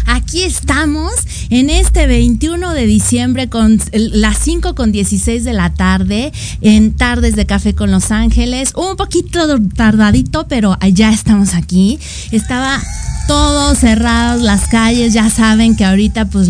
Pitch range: 190-245 Hz